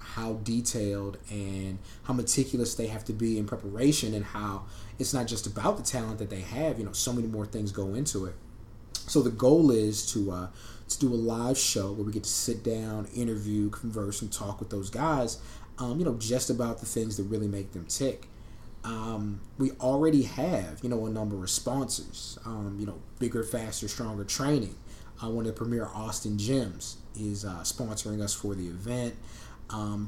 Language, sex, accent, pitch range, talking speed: English, male, American, 105-125 Hz, 200 wpm